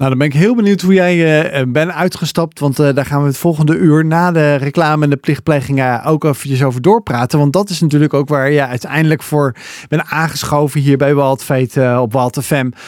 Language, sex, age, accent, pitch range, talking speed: Dutch, male, 40-59, Dutch, 130-155 Hz, 225 wpm